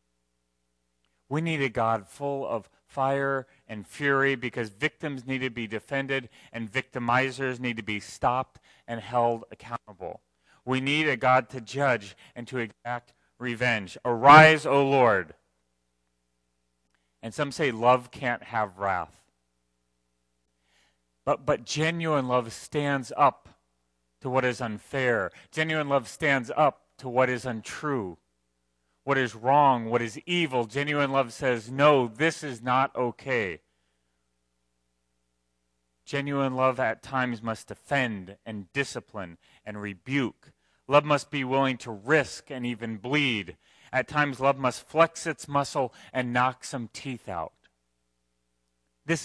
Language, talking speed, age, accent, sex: English, 135 wpm, 30-49, American, male